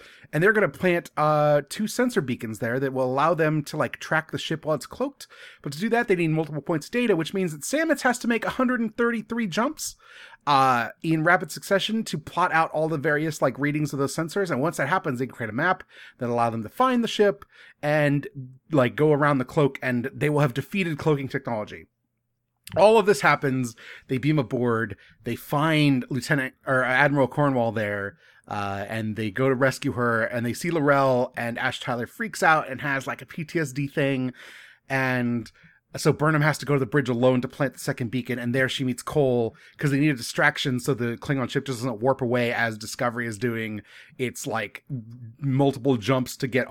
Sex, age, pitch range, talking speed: male, 30-49, 120-155 Hz, 210 wpm